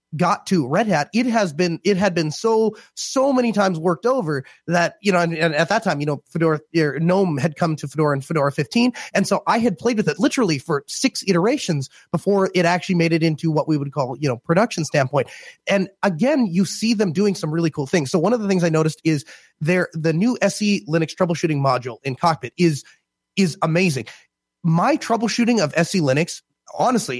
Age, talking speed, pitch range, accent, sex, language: 30-49, 210 wpm, 155-210 Hz, American, male, English